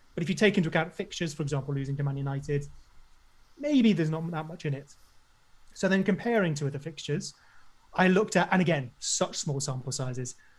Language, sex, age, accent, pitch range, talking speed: English, male, 30-49, British, 150-200 Hz, 200 wpm